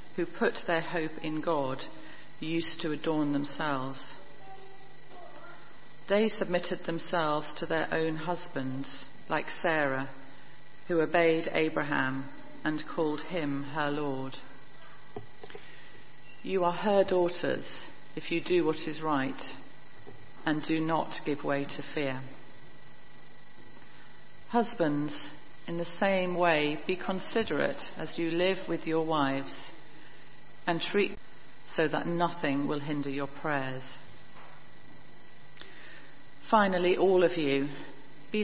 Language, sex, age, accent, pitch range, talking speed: English, female, 40-59, British, 140-170 Hz, 110 wpm